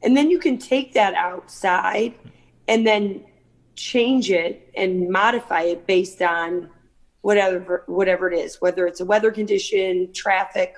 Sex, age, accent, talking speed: female, 40-59, American, 145 wpm